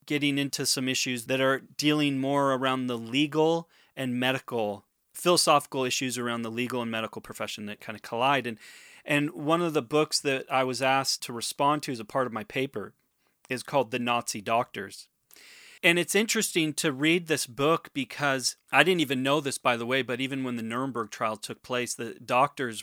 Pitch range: 125-155 Hz